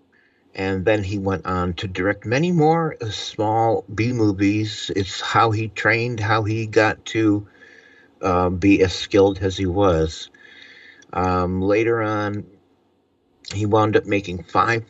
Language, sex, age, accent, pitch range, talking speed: English, male, 60-79, American, 95-115 Hz, 135 wpm